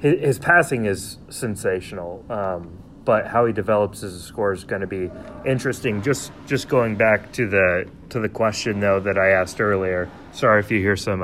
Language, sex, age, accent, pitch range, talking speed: English, male, 30-49, American, 95-120 Hz, 185 wpm